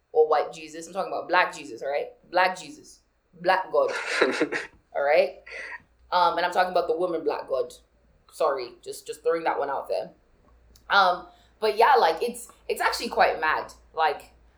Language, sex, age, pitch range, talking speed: English, female, 20-39, 160-250 Hz, 175 wpm